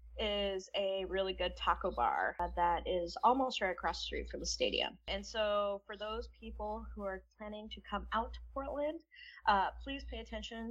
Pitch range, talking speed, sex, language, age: 175-205 Hz, 185 wpm, female, English, 20-39